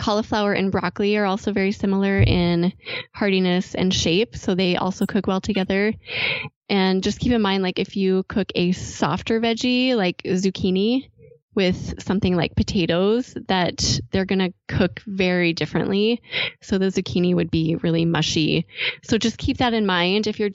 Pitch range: 175-210 Hz